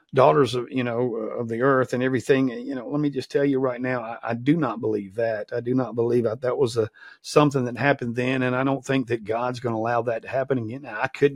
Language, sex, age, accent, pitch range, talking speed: English, male, 50-69, American, 125-150 Hz, 265 wpm